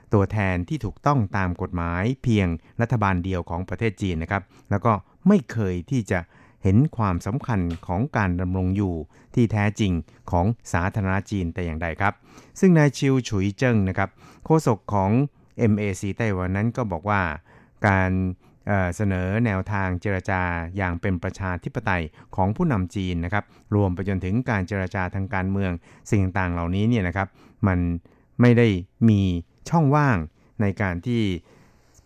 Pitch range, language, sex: 90-115 Hz, Thai, male